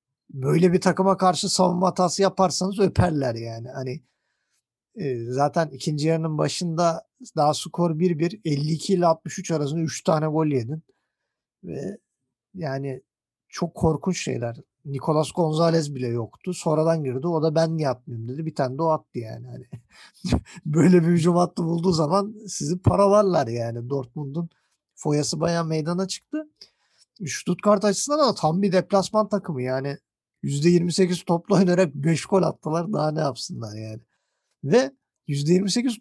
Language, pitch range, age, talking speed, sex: Turkish, 150-195 Hz, 50-69, 140 wpm, male